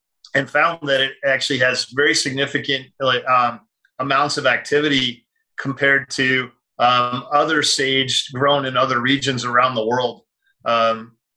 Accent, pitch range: American, 125-145 Hz